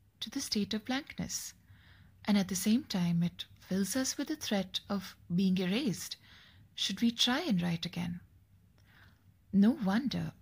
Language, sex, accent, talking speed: English, female, Indian, 155 wpm